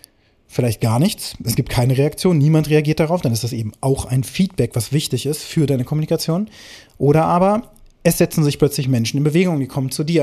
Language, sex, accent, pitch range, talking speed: German, male, German, 120-160 Hz, 210 wpm